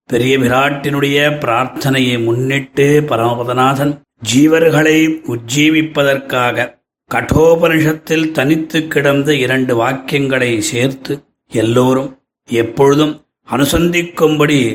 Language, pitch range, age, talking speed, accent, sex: Tamil, 125-140 Hz, 30-49, 65 wpm, native, male